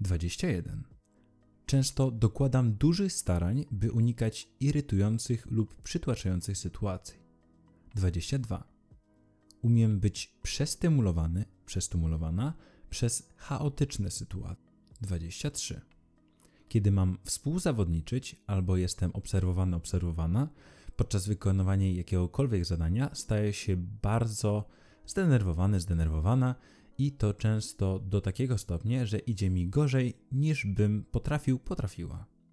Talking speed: 90 wpm